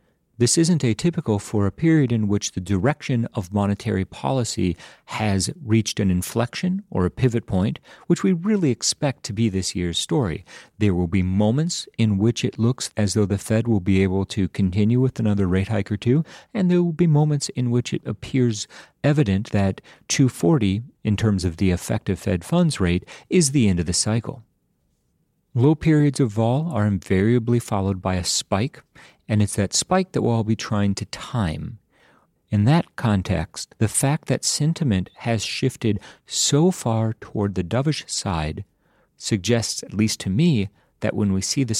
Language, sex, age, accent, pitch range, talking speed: English, male, 40-59, American, 100-135 Hz, 180 wpm